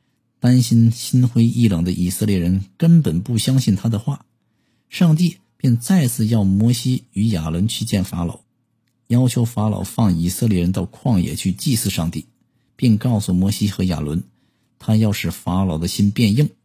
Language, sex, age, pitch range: Chinese, male, 50-69, 100-125 Hz